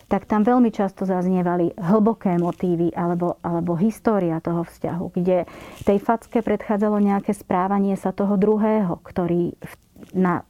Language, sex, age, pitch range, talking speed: Slovak, female, 40-59, 170-200 Hz, 135 wpm